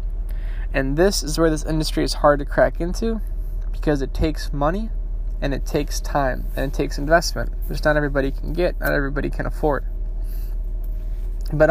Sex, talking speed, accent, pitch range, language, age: male, 170 wpm, American, 100-155 Hz, English, 10-29